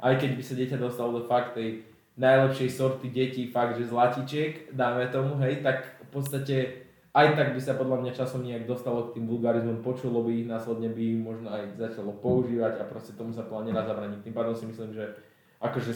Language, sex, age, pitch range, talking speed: Slovak, male, 20-39, 115-130 Hz, 205 wpm